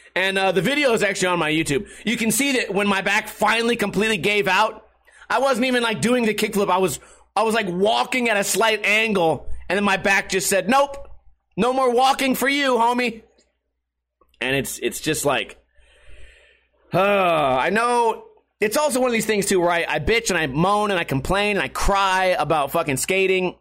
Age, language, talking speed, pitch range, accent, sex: 30-49, English, 205 wpm, 185-230 Hz, American, male